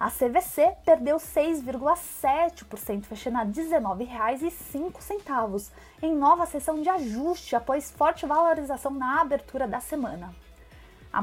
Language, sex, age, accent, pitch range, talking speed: Portuguese, female, 20-39, Brazilian, 260-350 Hz, 120 wpm